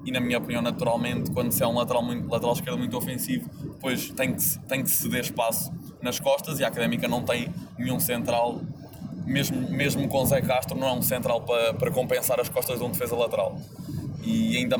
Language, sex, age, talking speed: Portuguese, male, 20-39, 205 wpm